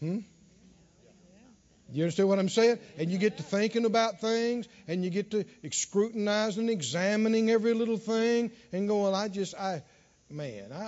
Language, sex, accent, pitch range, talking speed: English, male, American, 205-295 Hz, 165 wpm